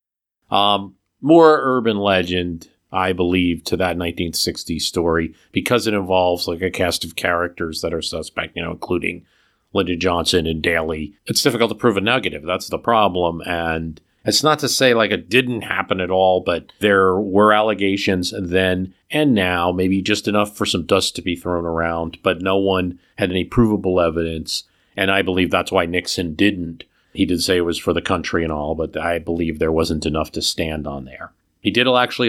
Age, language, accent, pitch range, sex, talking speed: 40-59, English, American, 90-110 Hz, male, 190 wpm